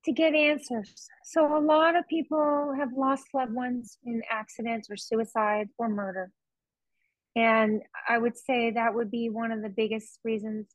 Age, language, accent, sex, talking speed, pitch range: 30-49, English, American, female, 165 wpm, 210-265 Hz